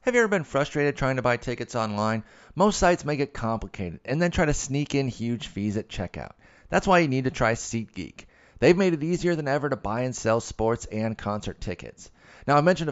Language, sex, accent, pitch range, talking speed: English, male, American, 105-140 Hz, 230 wpm